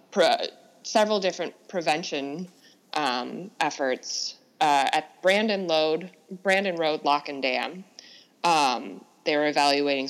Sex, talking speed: female, 105 wpm